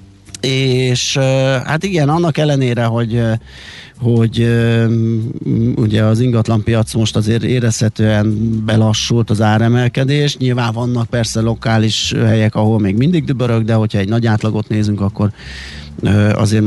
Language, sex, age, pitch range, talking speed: Hungarian, male, 30-49, 110-130 Hz, 120 wpm